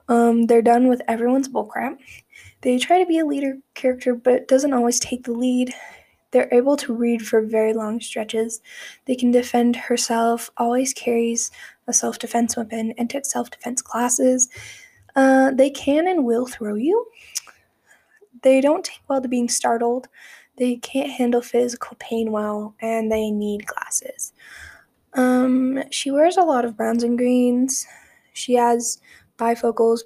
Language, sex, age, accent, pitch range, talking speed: English, female, 10-29, American, 230-260 Hz, 150 wpm